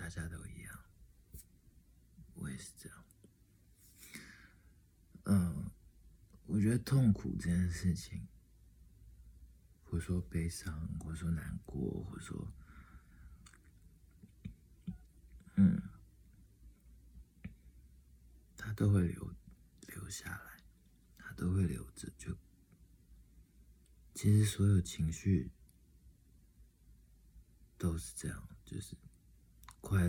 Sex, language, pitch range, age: male, Chinese, 65-95 Hz, 50-69